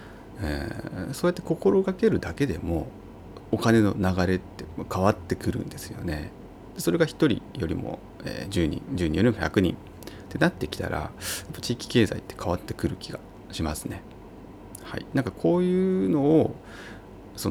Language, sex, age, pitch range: Japanese, male, 30-49, 90-110 Hz